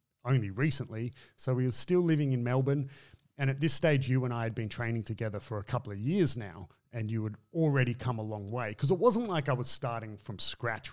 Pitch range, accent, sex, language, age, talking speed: 110-135 Hz, Australian, male, English, 30-49, 235 wpm